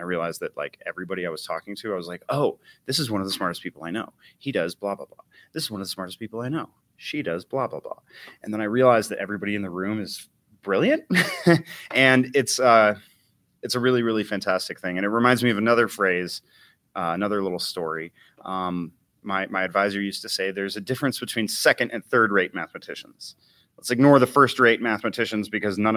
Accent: American